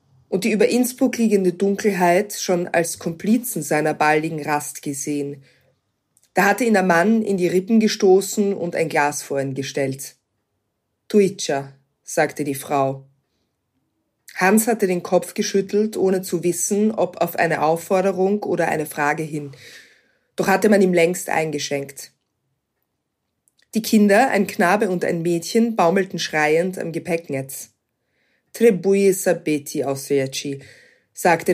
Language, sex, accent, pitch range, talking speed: German, female, German, 150-200 Hz, 130 wpm